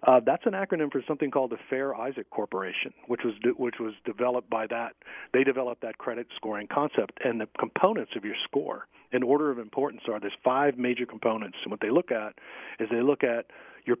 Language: English